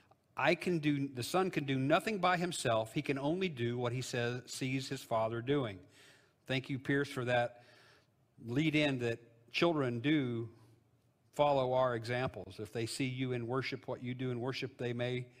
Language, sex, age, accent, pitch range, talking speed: English, male, 50-69, American, 120-160 Hz, 180 wpm